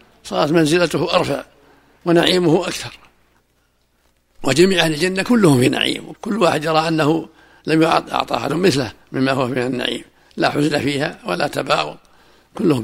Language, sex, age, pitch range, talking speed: Arabic, male, 60-79, 135-165 Hz, 135 wpm